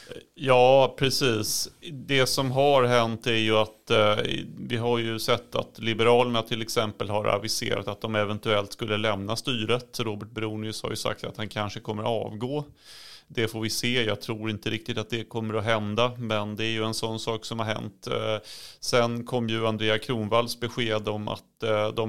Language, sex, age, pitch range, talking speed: Swedish, male, 30-49, 110-120 Hz, 185 wpm